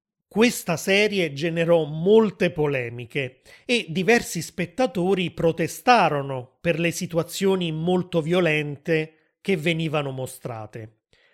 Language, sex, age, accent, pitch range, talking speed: Italian, male, 30-49, native, 155-215 Hz, 90 wpm